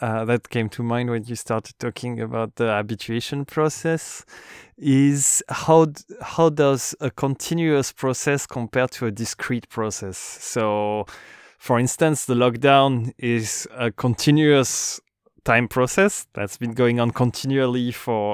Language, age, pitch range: English, 20-39, 110-130 Hz